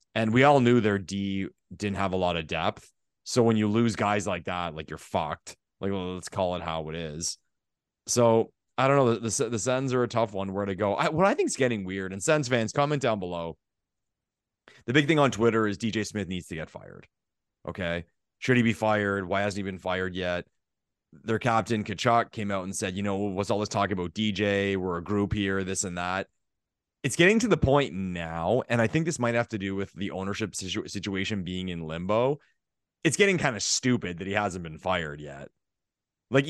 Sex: male